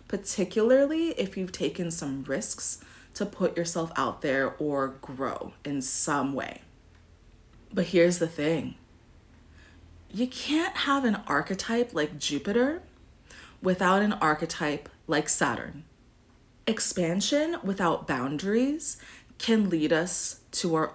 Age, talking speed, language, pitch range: 30-49, 115 wpm, English, 140-210 Hz